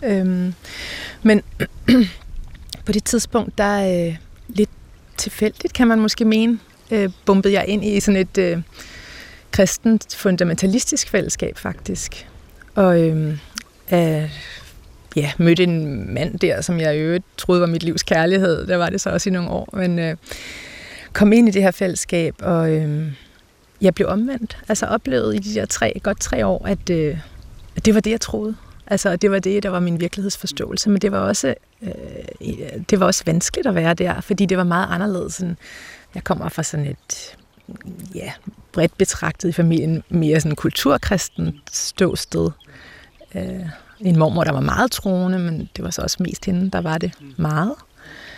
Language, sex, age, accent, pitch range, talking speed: Danish, female, 30-49, native, 165-205 Hz, 170 wpm